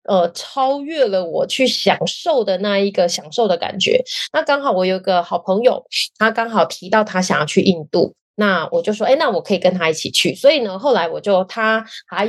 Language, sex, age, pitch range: Chinese, female, 20-39, 190-270 Hz